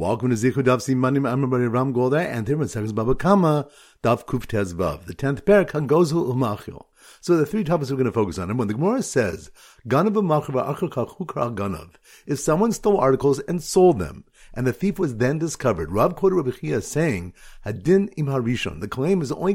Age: 50-69